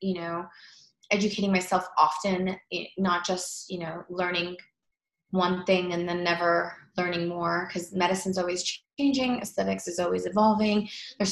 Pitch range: 180-200 Hz